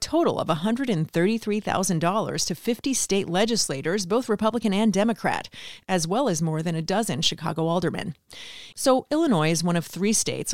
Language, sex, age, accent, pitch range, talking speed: English, female, 30-49, American, 170-220 Hz, 155 wpm